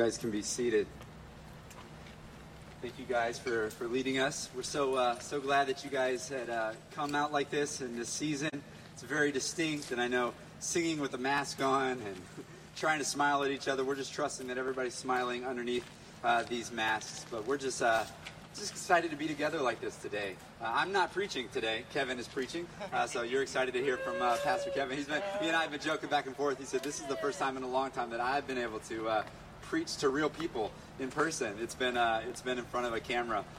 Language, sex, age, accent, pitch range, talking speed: English, male, 30-49, American, 125-155 Hz, 235 wpm